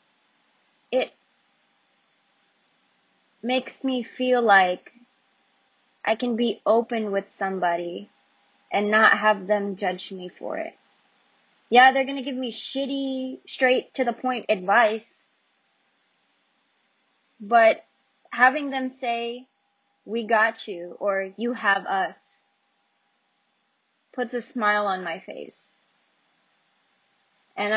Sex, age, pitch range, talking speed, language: female, 20-39, 195-250 Hz, 100 wpm, English